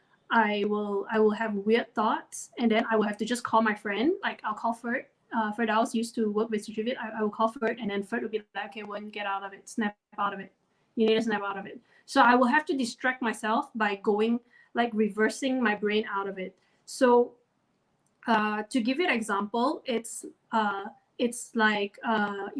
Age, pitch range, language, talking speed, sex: 20-39, 215-250 Hz, English, 235 wpm, female